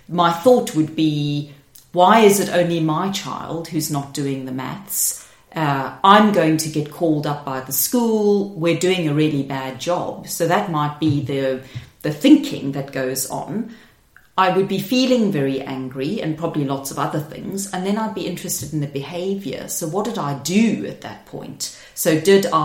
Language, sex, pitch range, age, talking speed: English, female, 145-185 Hz, 40-59, 190 wpm